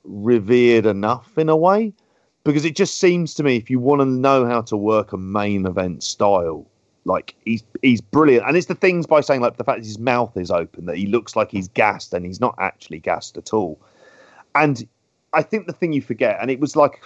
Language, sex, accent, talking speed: English, male, British, 230 wpm